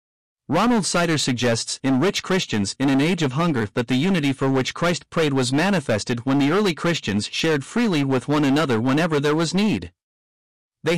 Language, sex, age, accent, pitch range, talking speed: English, male, 50-69, American, 125-175 Hz, 185 wpm